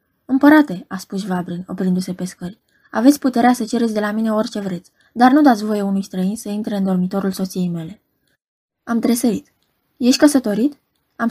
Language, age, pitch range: Romanian, 20-39, 195-255 Hz